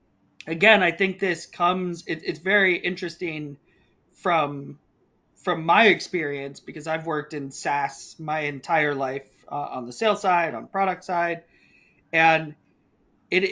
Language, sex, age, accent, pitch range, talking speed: English, male, 30-49, American, 150-180 Hz, 135 wpm